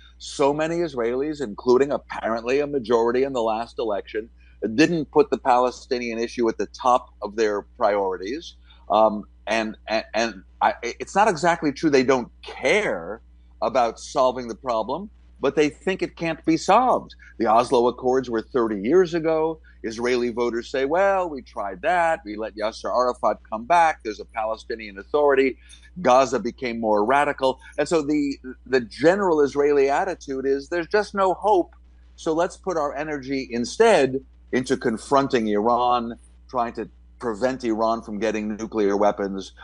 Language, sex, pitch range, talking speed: Arabic, male, 110-160 Hz, 155 wpm